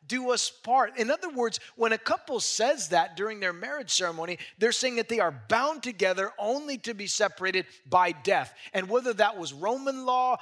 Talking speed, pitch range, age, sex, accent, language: 195 wpm, 170-235 Hz, 30-49, male, American, English